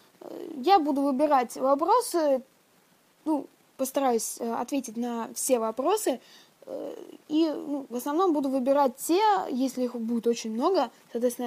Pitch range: 240-305 Hz